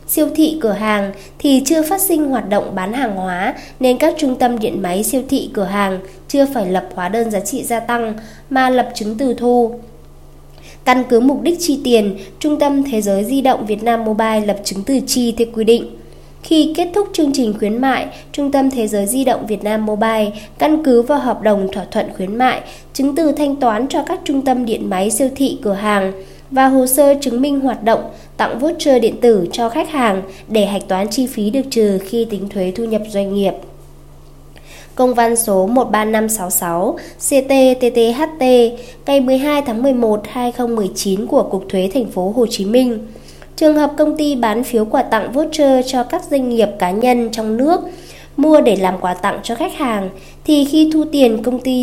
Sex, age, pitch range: female, 20-39, 205-270 Hz